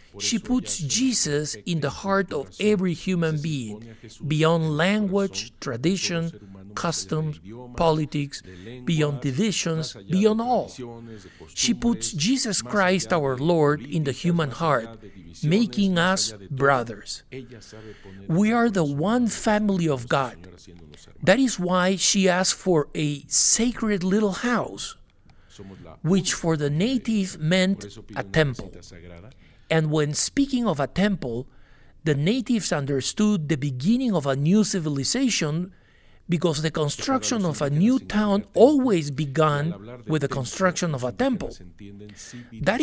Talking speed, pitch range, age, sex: 120 wpm, 125-195 Hz, 60-79, male